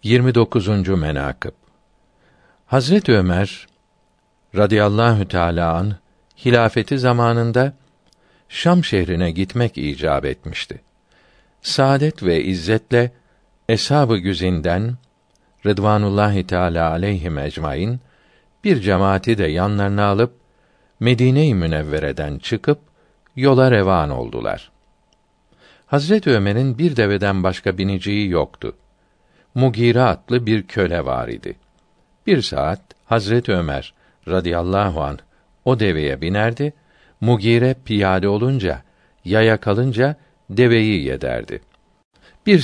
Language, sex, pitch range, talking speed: Turkish, male, 95-130 Hz, 90 wpm